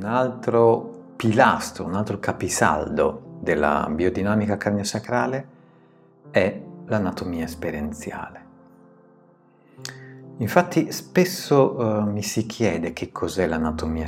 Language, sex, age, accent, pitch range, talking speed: Italian, male, 50-69, native, 90-125 Hz, 90 wpm